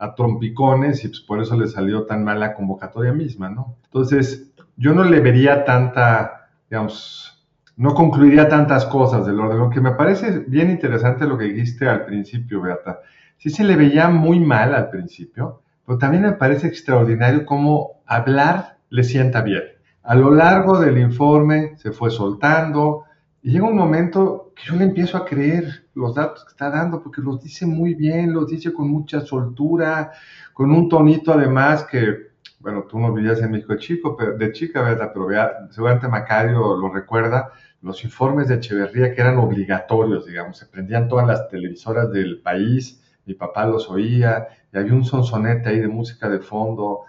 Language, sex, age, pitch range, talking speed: Spanish, male, 50-69, 110-150 Hz, 180 wpm